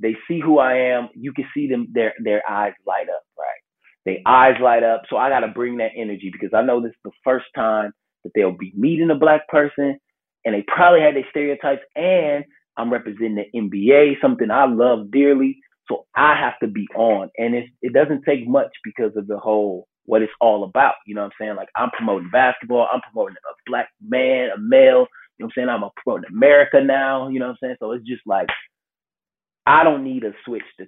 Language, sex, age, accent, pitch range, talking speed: English, male, 30-49, American, 110-140 Hz, 225 wpm